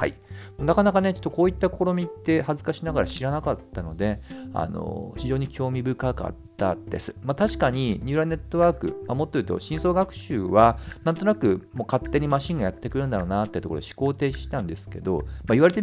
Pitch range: 100-160 Hz